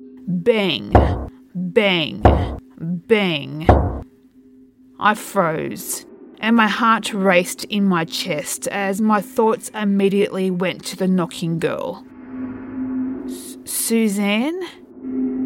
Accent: Australian